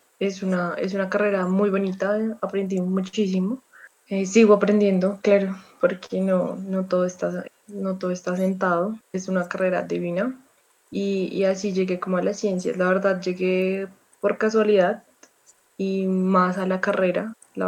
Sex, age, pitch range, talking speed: female, 20-39, 180-205 Hz, 155 wpm